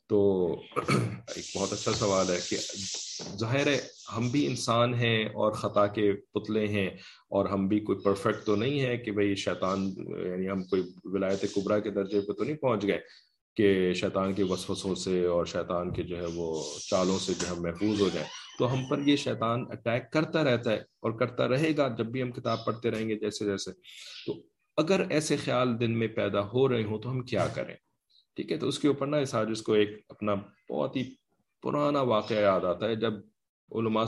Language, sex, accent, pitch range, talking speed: English, male, Indian, 95-120 Hz, 185 wpm